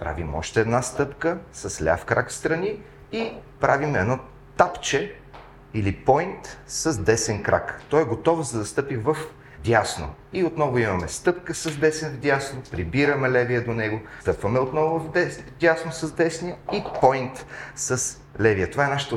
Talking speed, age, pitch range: 160 wpm, 40-59, 115-155 Hz